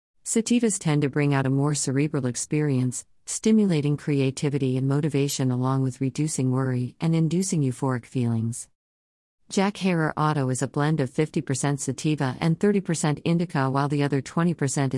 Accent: American